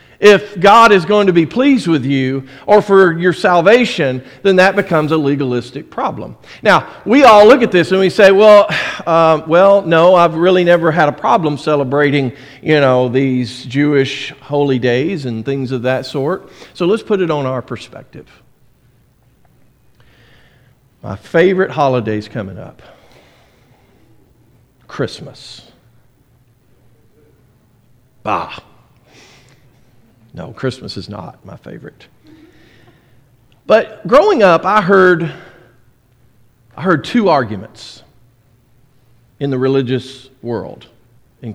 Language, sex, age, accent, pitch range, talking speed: English, male, 50-69, American, 120-165 Hz, 120 wpm